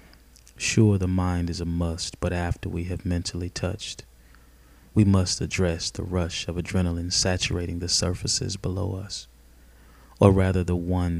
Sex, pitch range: male, 80-95 Hz